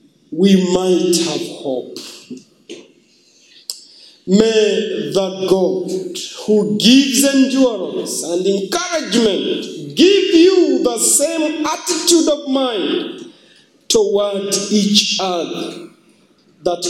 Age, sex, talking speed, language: 50-69, male, 80 wpm, English